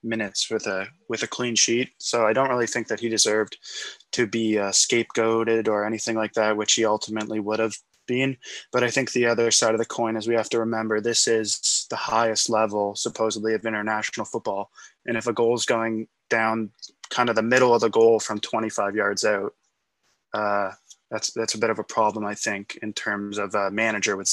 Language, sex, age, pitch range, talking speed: English, male, 20-39, 110-120 Hz, 210 wpm